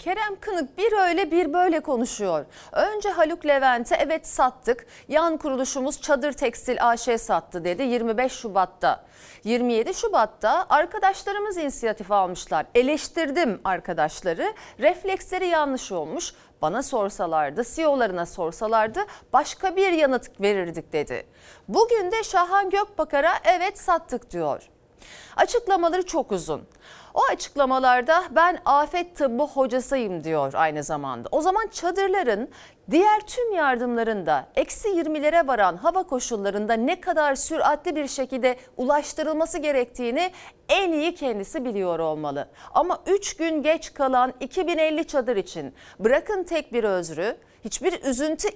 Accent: native